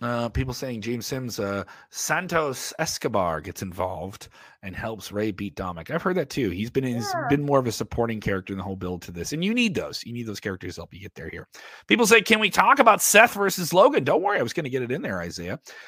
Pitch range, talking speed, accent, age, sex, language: 105-145 Hz, 255 wpm, American, 30-49, male, English